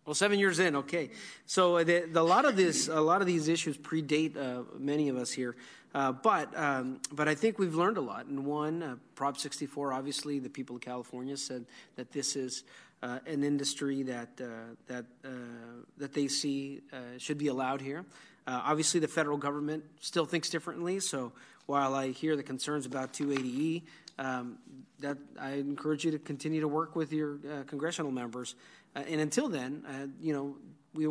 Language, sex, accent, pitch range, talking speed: English, male, American, 135-155 Hz, 195 wpm